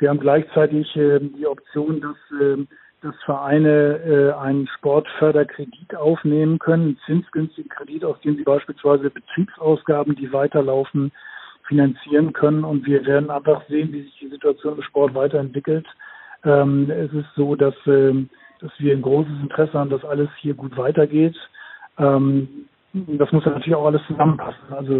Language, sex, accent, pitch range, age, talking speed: German, male, German, 135-150 Hz, 50-69, 150 wpm